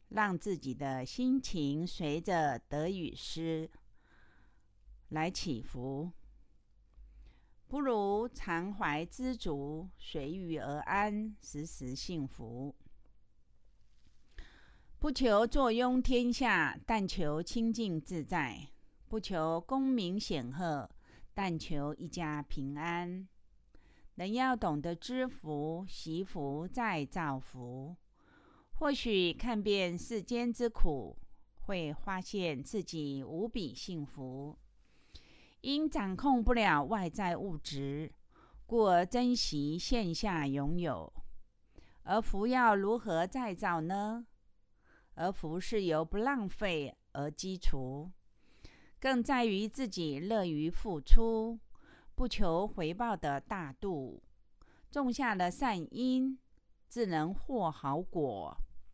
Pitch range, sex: 150-225 Hz, female